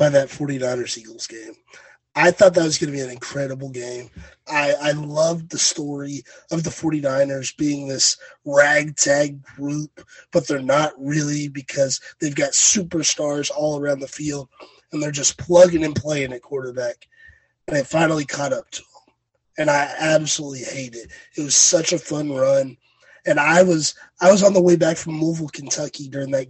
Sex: male